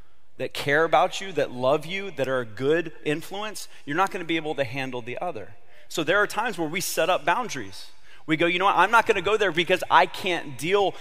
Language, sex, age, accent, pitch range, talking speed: English, male, 30-49, American, 145-185 Hz, 250 wpm